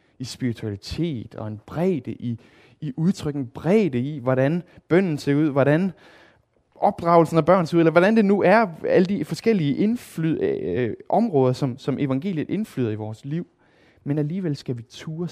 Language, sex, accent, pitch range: Danish, male, native, 120-165 Hz